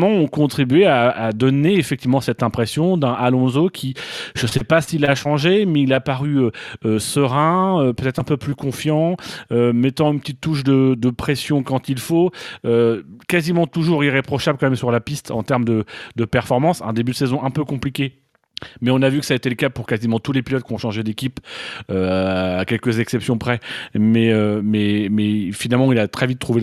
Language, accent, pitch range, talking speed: French, French, 120-155 Hz, 215 wpm